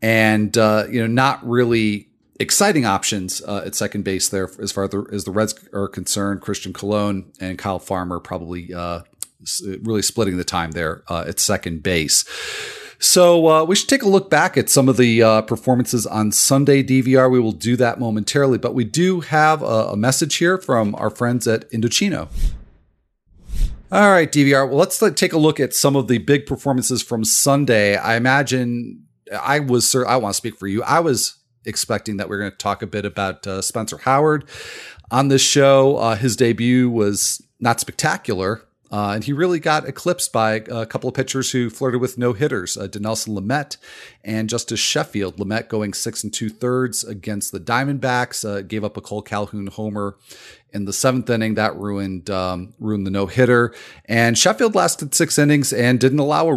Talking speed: 190 wpm